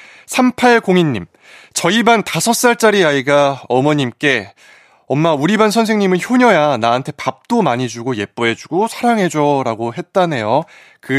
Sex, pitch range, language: male, 125-195 Hz, Korean